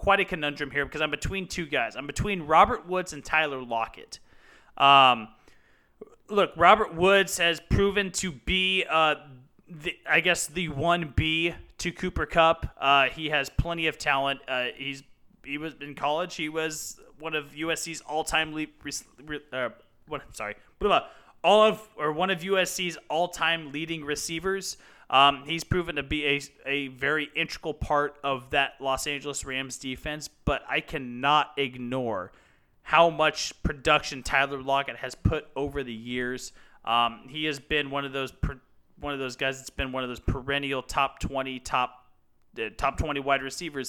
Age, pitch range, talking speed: 30-49, 135-160 Hz, 170 wpm